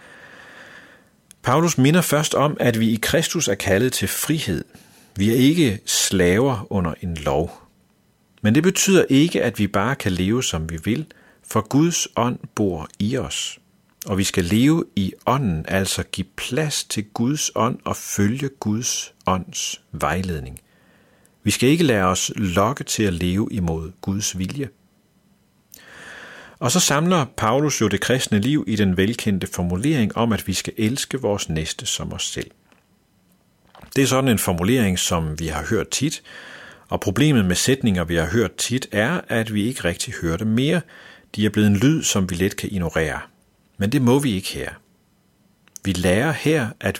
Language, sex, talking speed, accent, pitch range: Danish, male, 170 wpm, native, 95-135 Hz